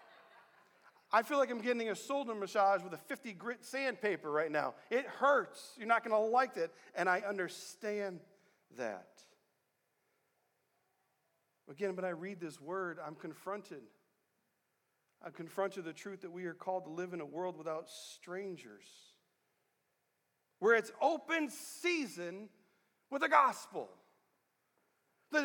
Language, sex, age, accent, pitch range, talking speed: English, male, 40-59, American, 170-270 Hz, 140 wpm